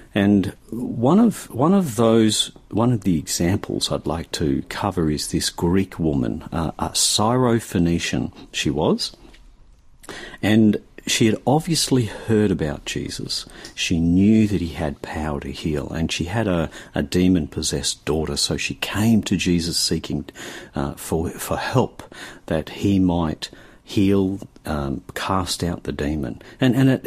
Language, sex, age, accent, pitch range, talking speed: English, male, 50-69, Australian, 80-105 Hz, 150 wpm